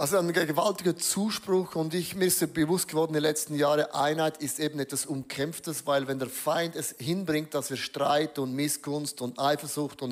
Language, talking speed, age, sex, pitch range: German, 195 wpm, 30-49, male, 135-160 Hz